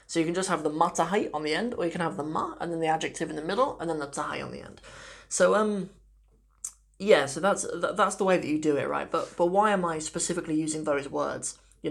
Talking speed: 265 wpm